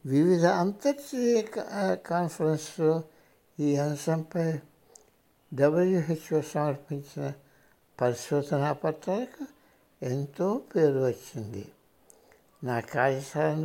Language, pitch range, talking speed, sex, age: Hindi, 135-180 Hz, 50 wpm, male, 60-79